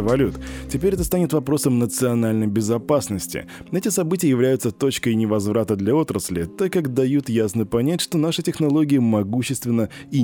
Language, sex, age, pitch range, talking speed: Russian, male, 20-39, 100-145 Hz, 140 wpm